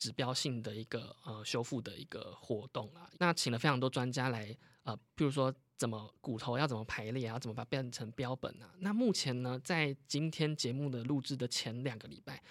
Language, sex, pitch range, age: Chinese, male, 120-150 Hz, 20-39